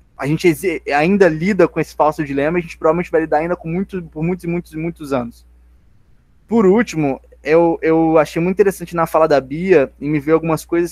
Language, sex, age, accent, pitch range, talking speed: Portuguese, male, 20-39, Brazilian, 145-180 Hz, 220 wpm